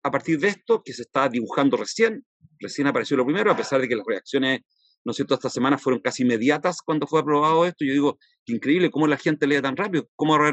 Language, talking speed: Spanish, 245 wpm